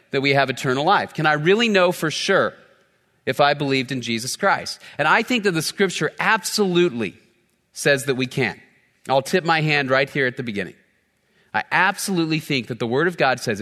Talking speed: 205 wpm